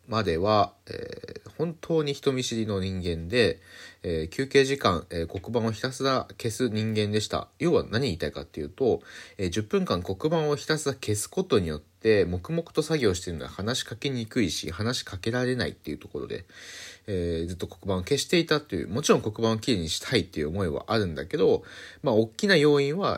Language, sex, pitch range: Japanese, male, 90-135 Hz